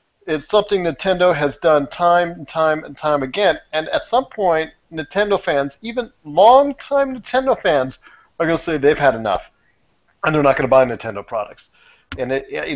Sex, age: male, 40-59